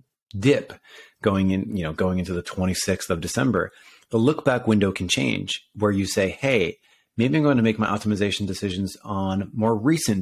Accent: American